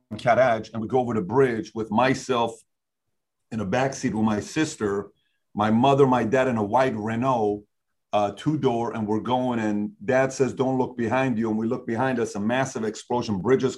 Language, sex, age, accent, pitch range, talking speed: English, male, 40-59, American, 110-130 Hz, 195 wpm